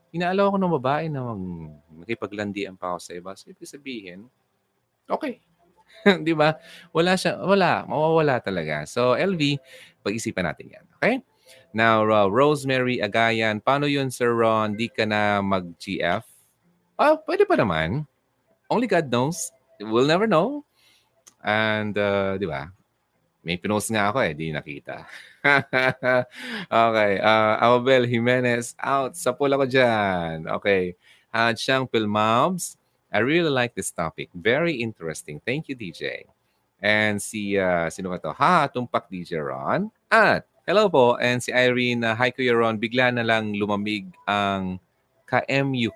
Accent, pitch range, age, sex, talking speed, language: native, 100-140 Hz, 20-39, male, 140 wpm, Filipino